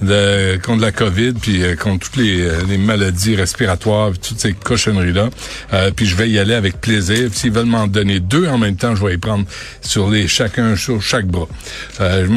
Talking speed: 205 wpm